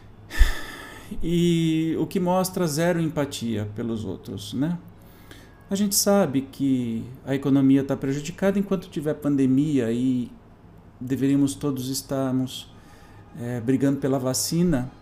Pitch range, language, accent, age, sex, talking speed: 125-155 Hz, Portuguese, Brazilian, 40-59, male, 110 wpm